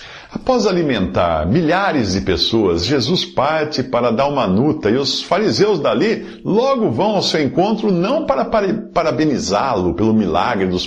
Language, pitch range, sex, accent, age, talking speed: Portuguese, 125-175 Hz, male, Brazilian, 50-69, 145 wpm